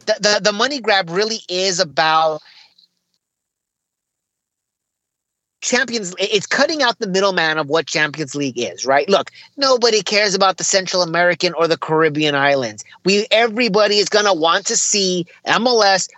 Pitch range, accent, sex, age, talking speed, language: 165-210 Hz, American, male, 30-49, 150 wpm, English